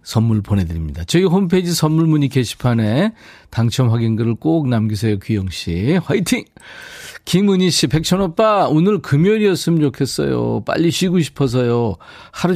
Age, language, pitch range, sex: 40-59, Korean, 105-155 Hz, male